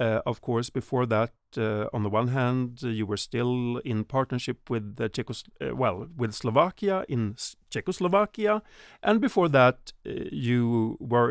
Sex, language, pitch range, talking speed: male, Czech, 110-135 Hz, 170 wpm